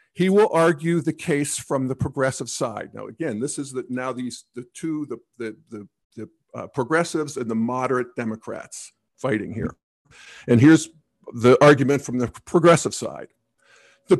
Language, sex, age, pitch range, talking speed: English, male, 50-69, 130-175 Hz, 165 wpm